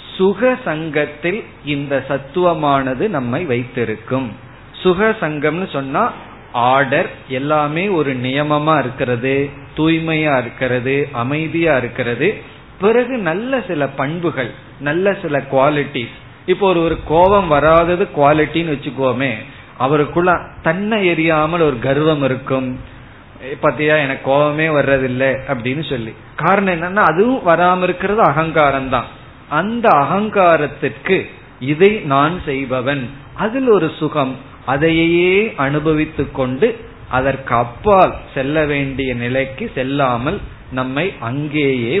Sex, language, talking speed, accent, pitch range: male, Tamil, 90 wpm, native, 130-170 Hz